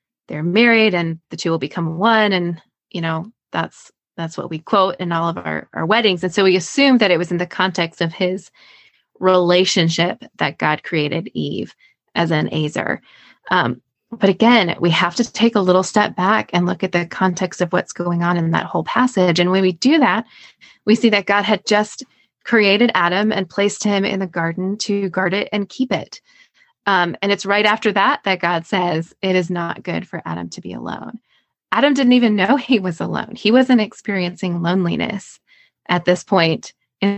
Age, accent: 20-39, American